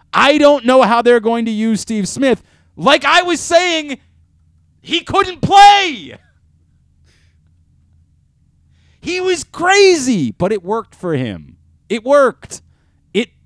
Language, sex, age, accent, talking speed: English, male, 30-49, American, 125 wpm